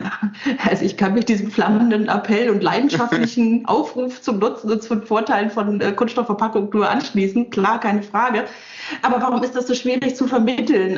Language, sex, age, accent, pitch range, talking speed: German, female, 30-49, German, 195-245 Hz, 170 wpm